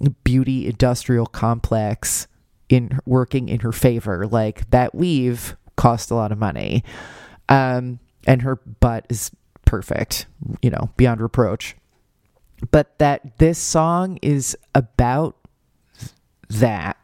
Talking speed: 115 wpm